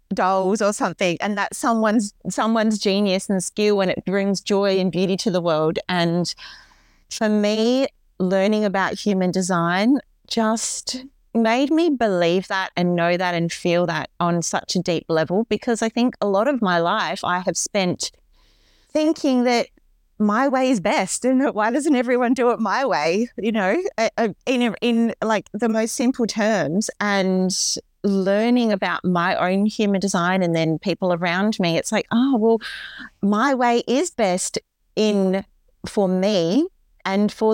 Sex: female